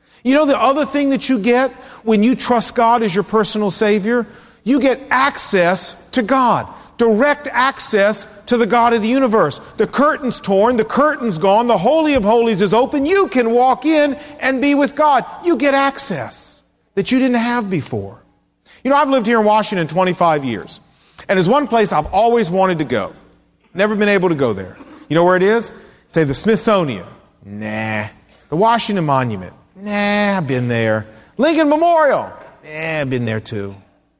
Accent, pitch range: American, 165-245 Hz